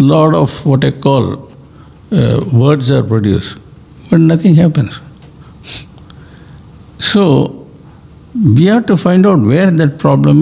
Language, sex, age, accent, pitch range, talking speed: English, male, 60-79, Indian, 125-155 Hz, 125 wpm